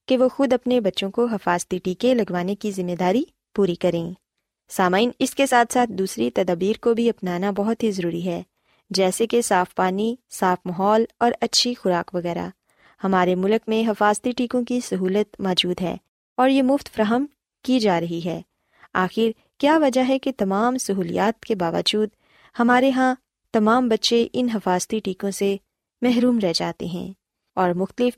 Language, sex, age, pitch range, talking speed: Urdu, female, 20-39, 185-240 Hz, 165 wpm